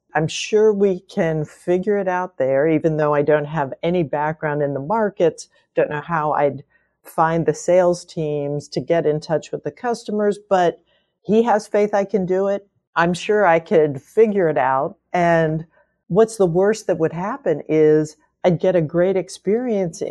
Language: English